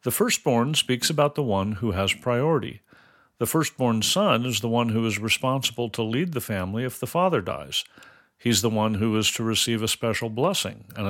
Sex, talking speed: male, 200 wpm